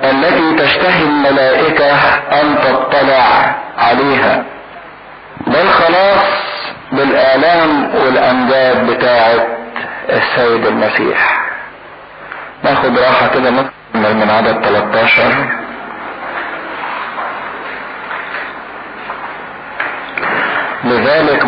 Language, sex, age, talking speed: English, male, 50-69, 55 wpm